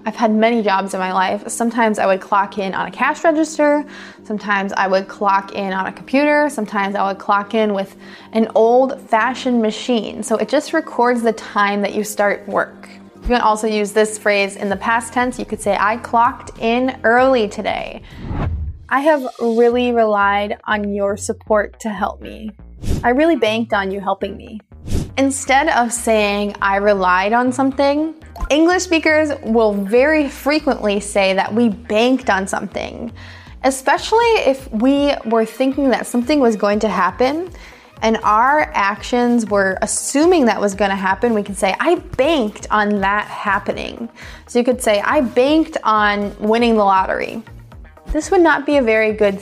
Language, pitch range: English, 205-255 Hz